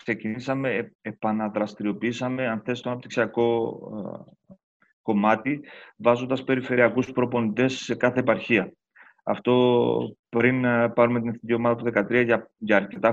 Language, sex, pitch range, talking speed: Greek, male, 110-125 Hz, 110 wpm